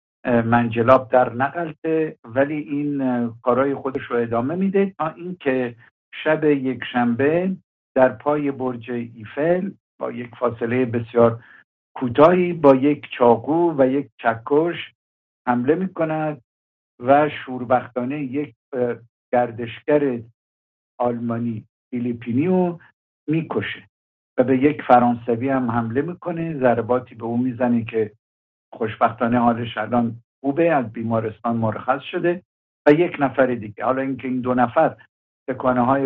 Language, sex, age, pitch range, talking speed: English, male, 60-79, 120-145 Hz, 115 wpm